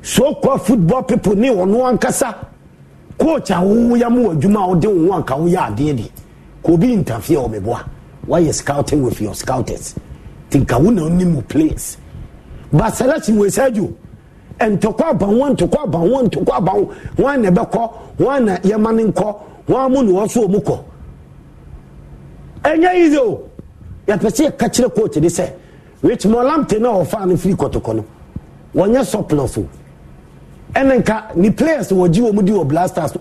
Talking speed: 135 wpm